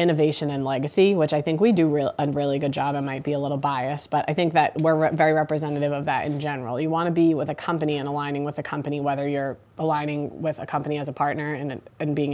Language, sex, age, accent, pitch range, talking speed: English, female, 20-39, American, 145-165 Hz, 265 wpm